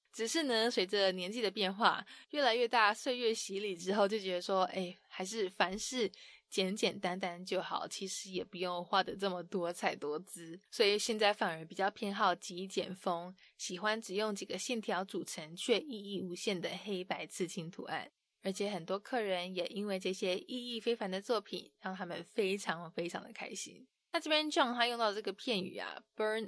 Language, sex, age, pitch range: English, female, 20-39, 185-225 Hz